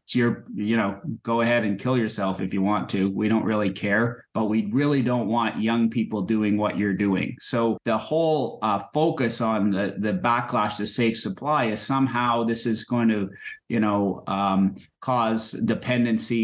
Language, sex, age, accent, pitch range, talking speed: English, male, 30-49, American, 100-115 Hz, 185 wpm